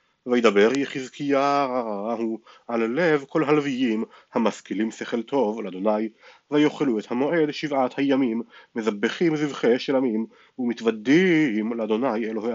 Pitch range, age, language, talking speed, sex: 110-145 Hz, 30-49, Hebrew, 105 wpm, male